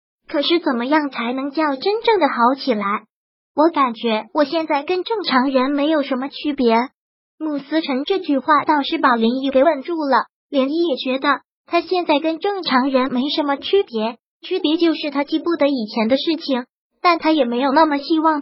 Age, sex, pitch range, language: 20-39, male, 260-325 Hz, Chinese